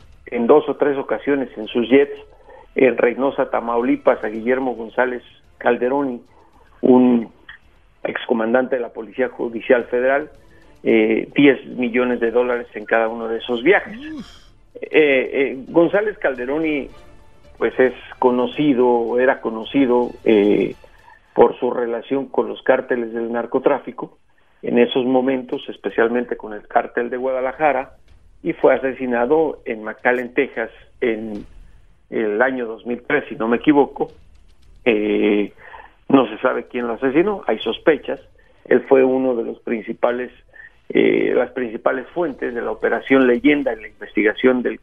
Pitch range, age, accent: 115-145 Hz, 50-69, Mexican